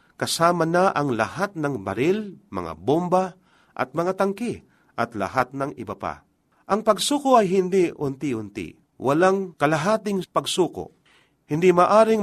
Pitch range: 135-180 Hz